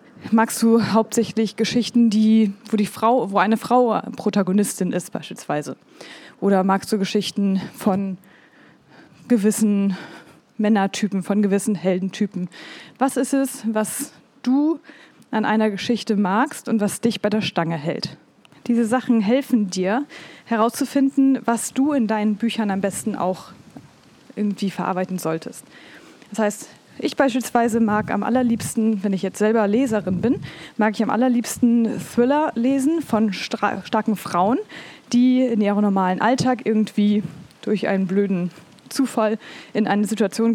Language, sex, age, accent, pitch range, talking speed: German, female, 20-39, German, 195-245 Hz, 130 wpm